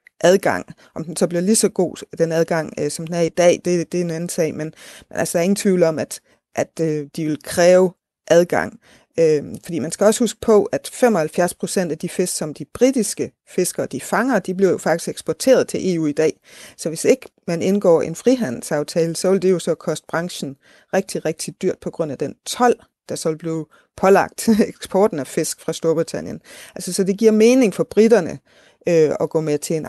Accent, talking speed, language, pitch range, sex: native, 220 wpm, Danish, 160-195 Hz, female